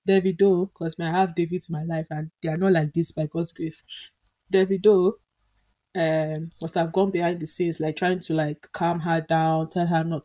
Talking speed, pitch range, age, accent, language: 210 wpm, 160-190 Hz, 10-29, Nigerian, English